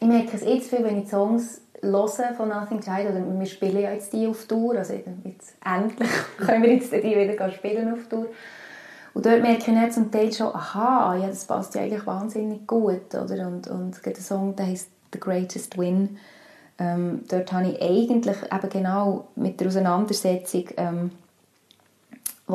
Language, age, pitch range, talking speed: German, 20-39, 180-210 Hz, 185 wpm